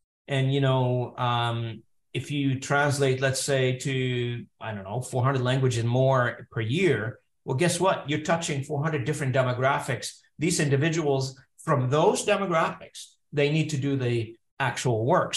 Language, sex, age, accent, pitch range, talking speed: English, male, 50-69, American, 125-155 Hz, 150 wpm